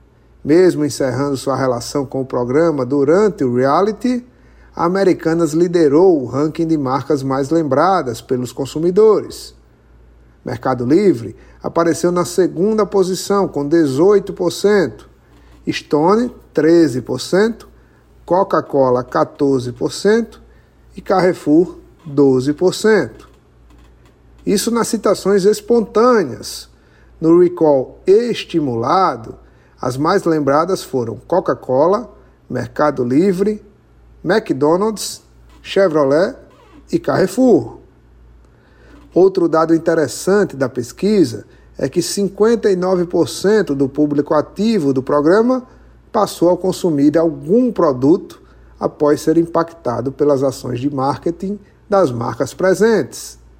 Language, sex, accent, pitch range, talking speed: Portuguese, male, Brazilian, 135-195 Hz, 90 wpm